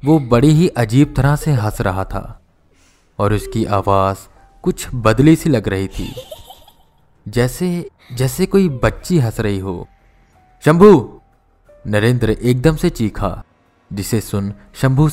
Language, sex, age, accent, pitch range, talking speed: Hindi, male, 20-39, native, 95-145 Hz, 130 wpm